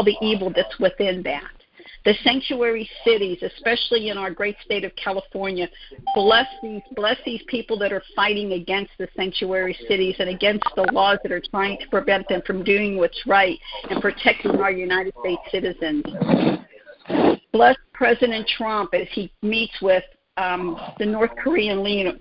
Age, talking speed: 50-69, 160 wpm